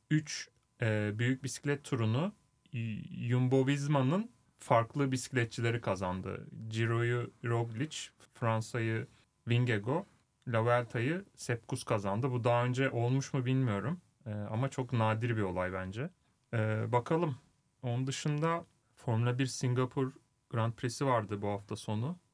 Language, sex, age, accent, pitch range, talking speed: Turkish, male, 30-49, native, 115-140 Hz, 120 wpm